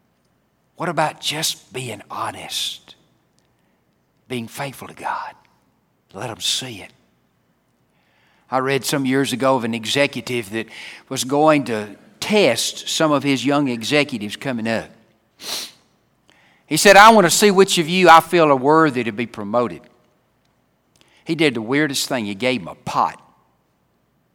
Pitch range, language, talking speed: 115-175 Hz, English, 145 wpm